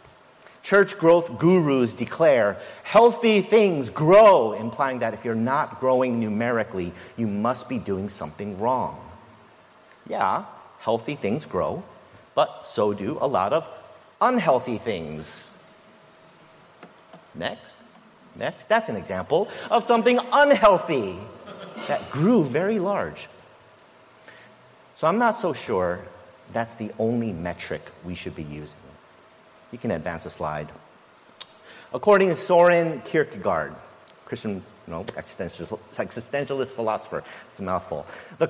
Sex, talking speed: male, 120 wpm